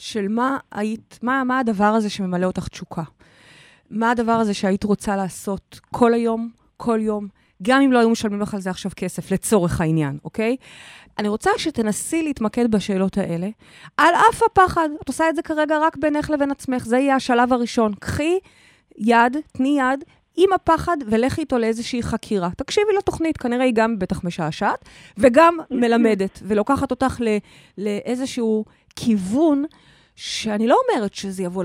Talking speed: 155 wpm